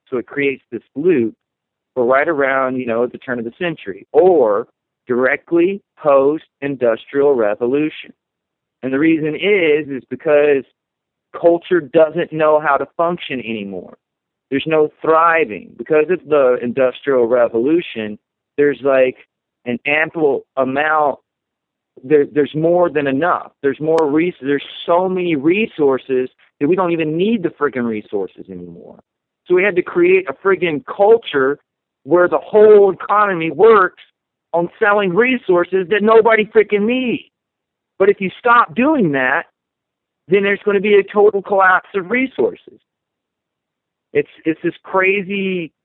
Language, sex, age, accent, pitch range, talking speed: English, male, 40-59, American, 140-200 Hz, 135 wpm